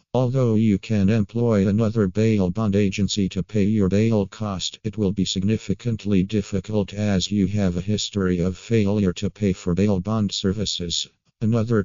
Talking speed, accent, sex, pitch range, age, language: 160 wpm, American, male, 95-110 Hz, 50-69, English